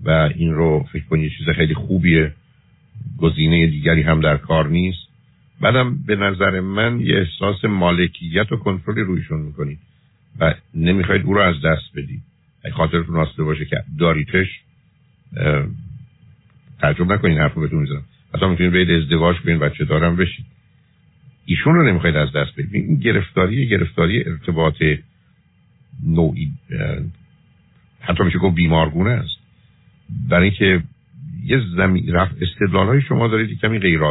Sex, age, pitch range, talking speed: male, 50-69, 80-110 Hz, 130 wpm